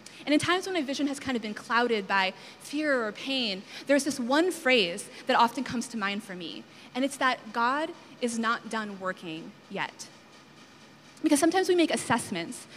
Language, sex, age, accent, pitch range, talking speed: English, female, 20-39, American, 215-280 Hz, 190 wpm